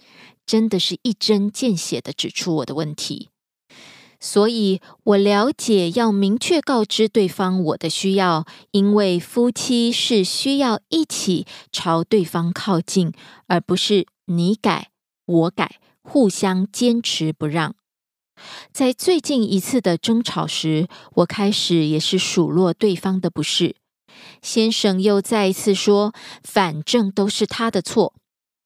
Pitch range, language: 180-225 Hz, Korean